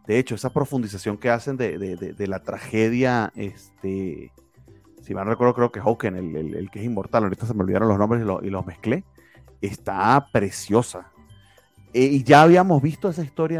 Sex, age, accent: male, 30-49, Venezuelan